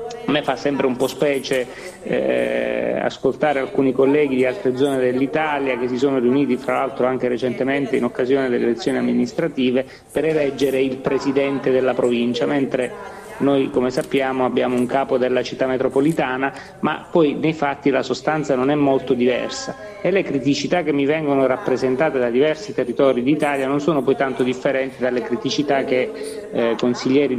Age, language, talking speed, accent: 30-49, Italian, 165 wpm, native